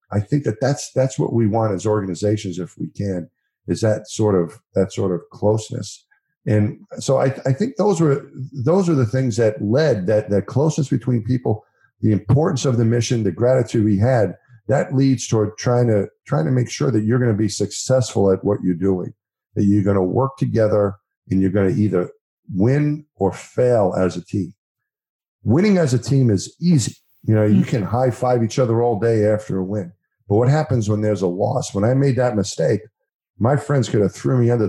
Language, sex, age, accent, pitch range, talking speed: English, male, 50-69, American, 100-130 Hz, 210 wpm